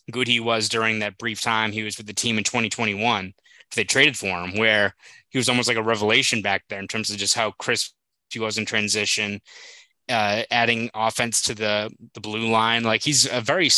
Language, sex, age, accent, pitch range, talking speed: English, male, 20-39, American, 105-115 Hz, 215 wpm